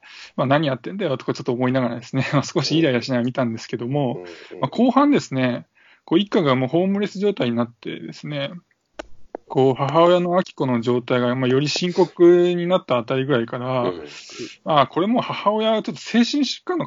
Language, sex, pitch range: Japanese, male, 130-185 Hz